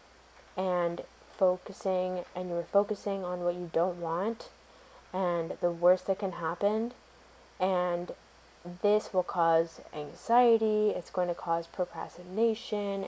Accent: American